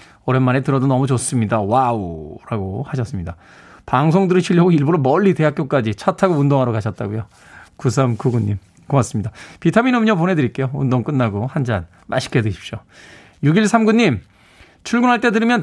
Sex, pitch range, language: male, 120-185 Hz, Korean